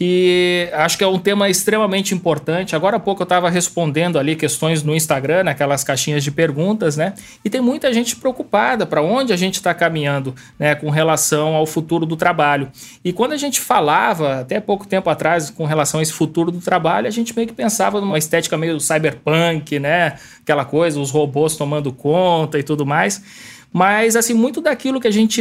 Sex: male